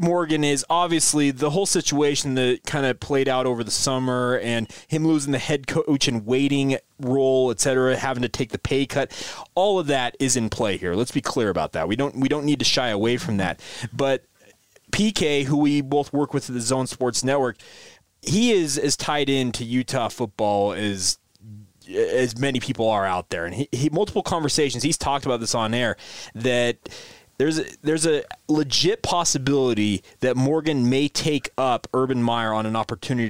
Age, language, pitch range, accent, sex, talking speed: 30-49, English, 120-150 Hz, American, male, 190 wpm